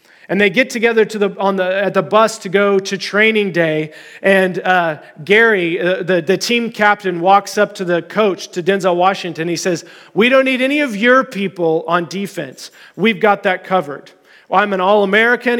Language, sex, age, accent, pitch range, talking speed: English, male, 40-59, American, 175-230 Hz, 180 wpm